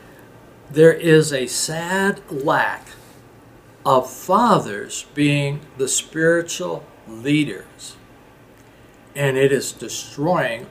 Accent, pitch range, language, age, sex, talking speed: American, 135-180 Hz, English, 60-79, male, 85 wpm